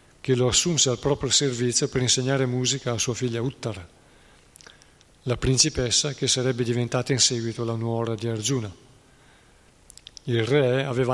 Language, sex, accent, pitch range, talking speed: Italian, male, native, 120-145 Hz, 145 wpm